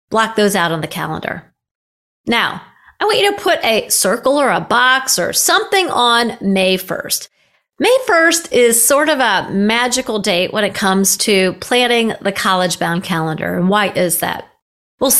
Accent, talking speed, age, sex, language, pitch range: American, 175 wpm, 40-59, female, English, 185-245 Hz